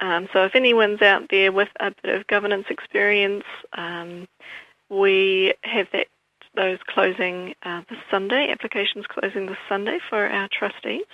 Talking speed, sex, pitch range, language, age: 150 wpm, female, 195-265 Hz, English, 40-59